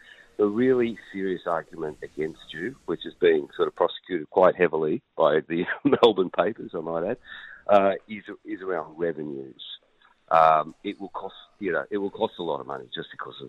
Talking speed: 185 wpm